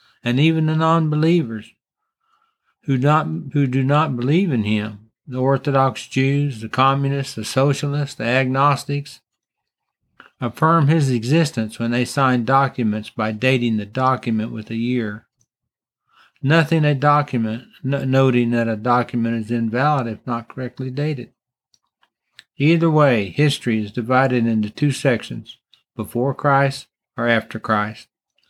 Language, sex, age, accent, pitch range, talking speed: English, male, 60-79, American, 120-145 Hz, 130 wpm